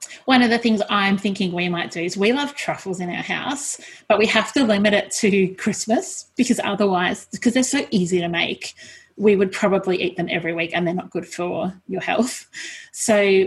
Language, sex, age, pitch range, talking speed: English, female, 30-49, 175-215 Hz, 210 wpm